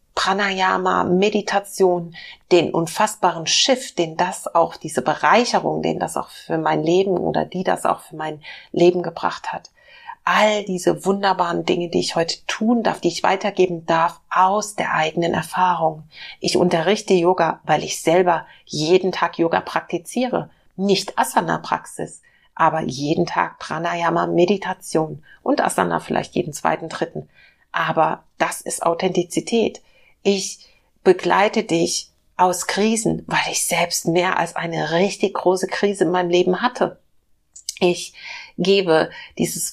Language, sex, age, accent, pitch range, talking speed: German, female, 40-59, German, 170-195 Hz, 135 wpm